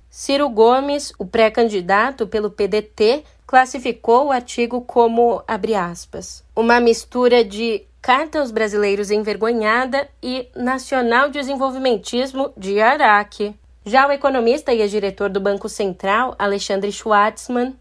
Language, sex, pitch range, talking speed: Portuguese, female, 210-250 Hz, 115 wpm